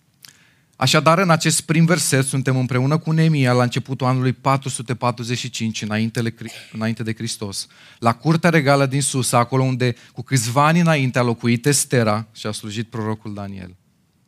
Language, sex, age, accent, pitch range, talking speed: Romanian, male, 30-49, native, 125-180 Hz, 145 wpm